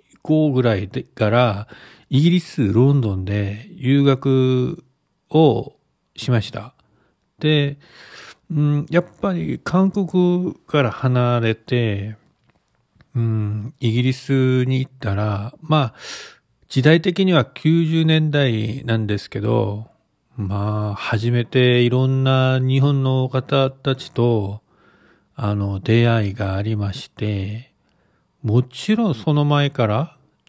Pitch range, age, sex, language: 110-145 Hz, 40-59, male, Japanese